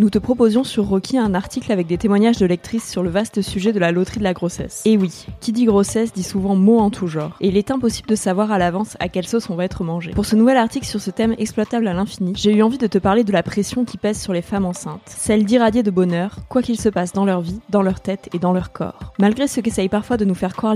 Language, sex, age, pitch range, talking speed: French, female, 20-39, 185-220 Hz, 285 wpm